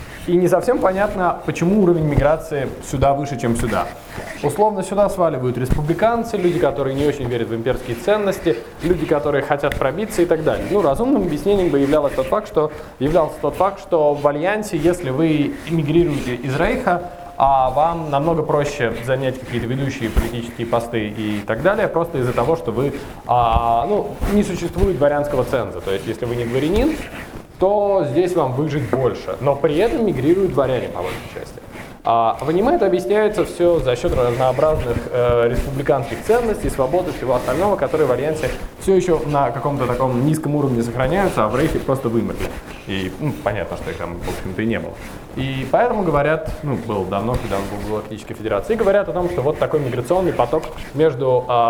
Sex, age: male, 20-39